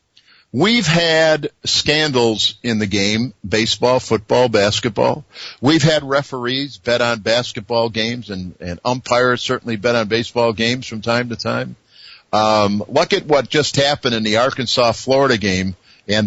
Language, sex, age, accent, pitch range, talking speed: English, male, 50-69, American, 110-145 Hz, 150 wpm